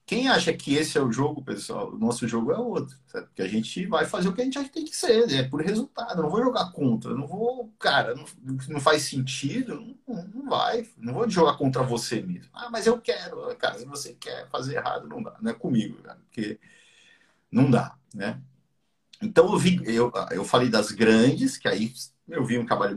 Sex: male